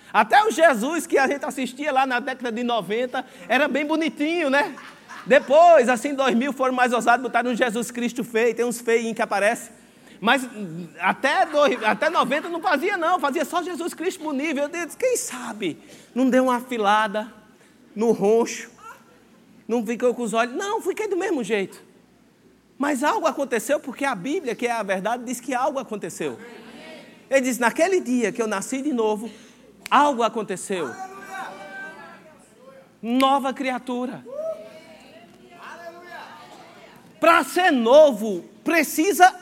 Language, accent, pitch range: Portuguese, Brazilian, 225-310 Hz